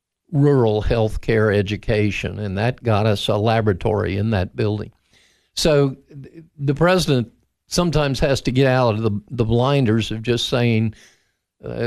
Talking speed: 145 wpm